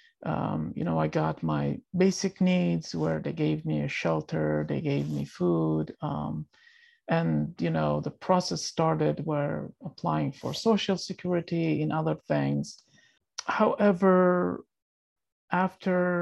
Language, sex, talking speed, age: English, male, 130 wpm, 50-69